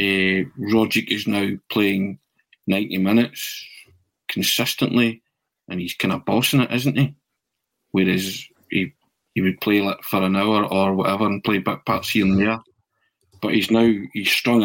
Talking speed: 160 wpm